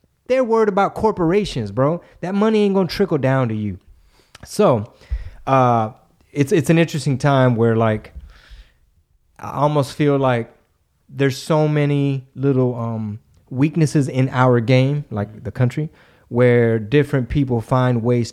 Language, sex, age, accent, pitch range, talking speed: English, male, 20-39, American, 115-150 Hz, 145 wpm